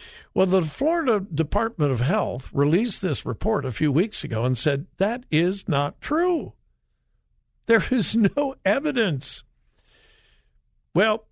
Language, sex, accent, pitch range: English, male, American, 135-200 Hz